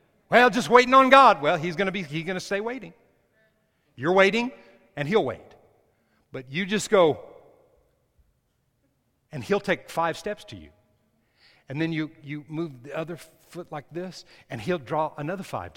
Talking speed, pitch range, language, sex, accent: 175 wpm, 145-225 Hz, English, male, American